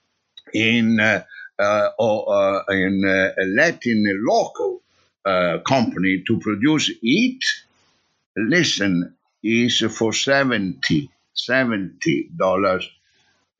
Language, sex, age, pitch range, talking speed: English, male, 60-79, 95-135 Hz, 70 wpm